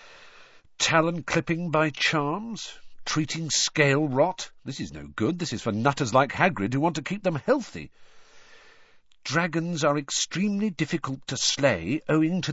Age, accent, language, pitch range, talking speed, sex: 50-69, British, English, 120-190 Hz, 140 wpm, male